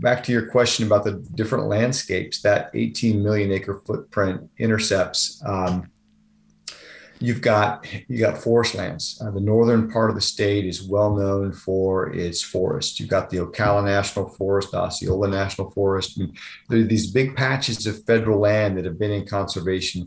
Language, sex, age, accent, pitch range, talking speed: English, male, 40-59, American, 100-115 Hz, 170 wpm